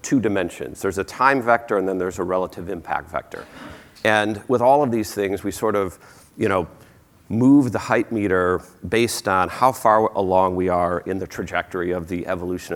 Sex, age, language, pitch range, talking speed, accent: male, 40-59, English, 95-115 Hz, 195 wpm, American